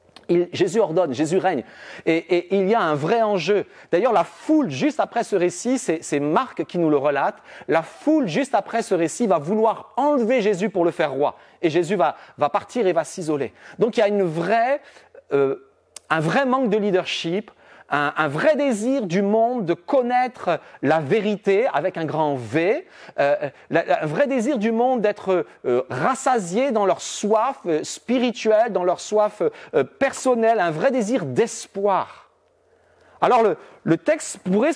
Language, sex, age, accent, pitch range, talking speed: French, male, 40-59, French, 180-255 Hz, 180 wpm